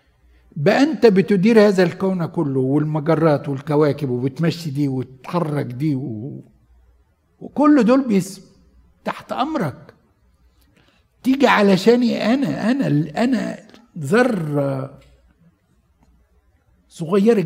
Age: 60-79